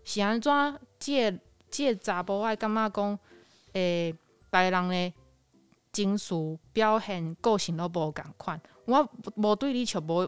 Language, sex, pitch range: Chinese, female, 170-225 Hz